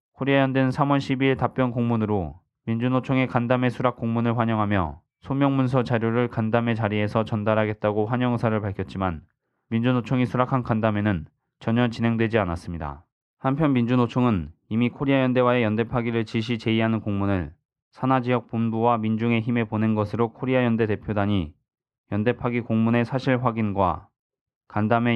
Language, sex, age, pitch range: Korean, male, 20-39, 110-125 Hz